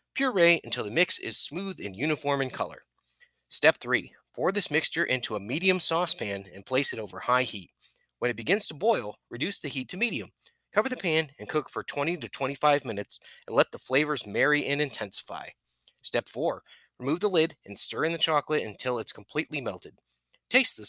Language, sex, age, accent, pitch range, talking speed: English, male, 30-49, American, 120-170 Hz, 195 wpm